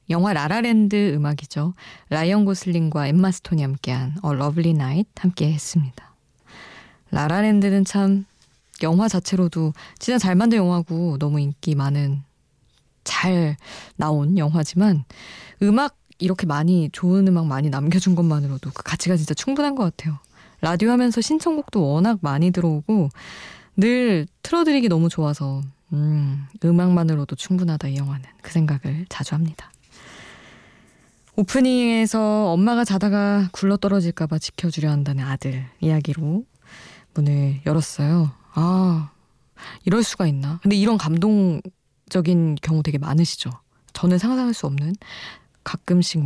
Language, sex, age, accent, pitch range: Korean, female, 20-39, native, 150-195 Hz